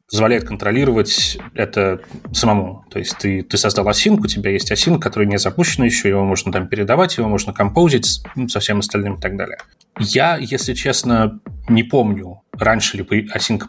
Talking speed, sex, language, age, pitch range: 170 wpm, male, Russian, 20-39, 100-120 Hz